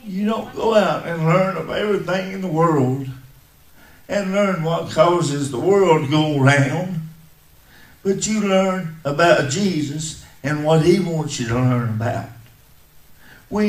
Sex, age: male, 50-69